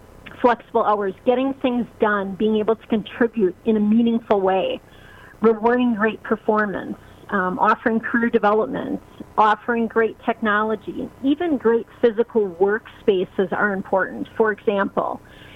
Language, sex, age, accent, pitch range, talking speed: English, female, 40-59, American, 205-235 Hz, 120 wpm